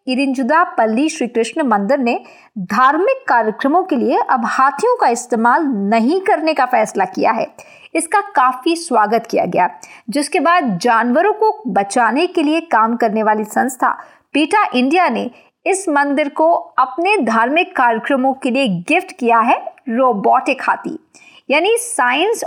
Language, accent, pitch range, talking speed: Hindi, native, 235-325 Hz, 150 wpm